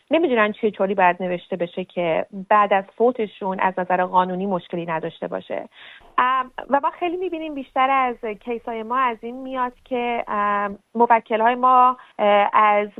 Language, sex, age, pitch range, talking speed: Persian, female, 30-49, 190-235 Hz, 145 wpm